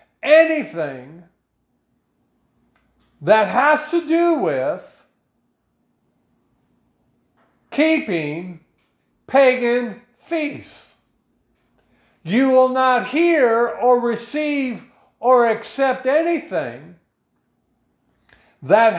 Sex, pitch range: male, 200-280 Hz